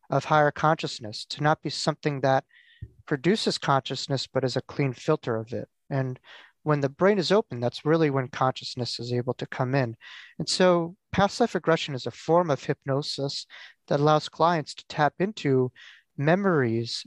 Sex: male